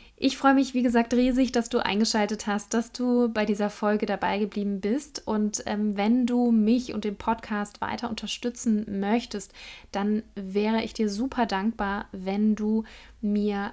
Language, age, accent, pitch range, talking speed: German, 20-39, German, 205-230 Hz, 165 wpm